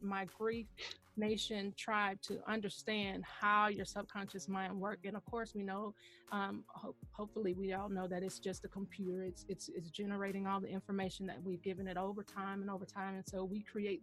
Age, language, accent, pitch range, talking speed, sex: 30-49, English, American, 190-225 Hz, 200 wpm, female